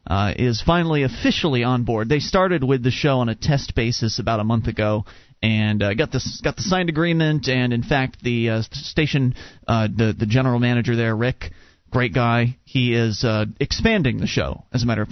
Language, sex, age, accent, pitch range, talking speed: English, male, 30-49, American, 110-145 Hz, 205 wpm